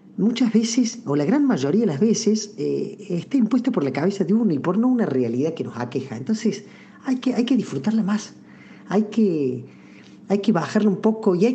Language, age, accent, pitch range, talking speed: Spanish, 40-59, Argentinian, 140-220 Hz, 215 wpm